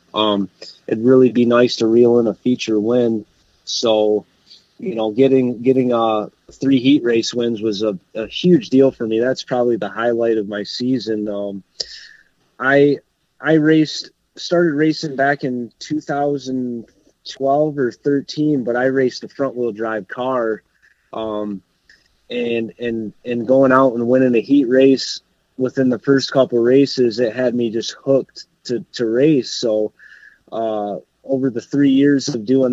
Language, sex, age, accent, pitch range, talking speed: English, male, 20-39, American, 110-135 Hz, 160 wpm